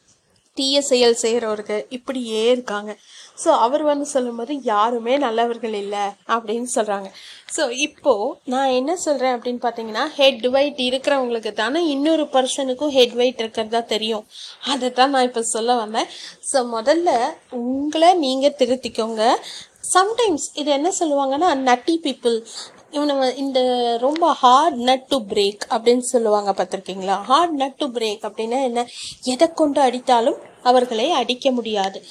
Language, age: Tamil, 30-49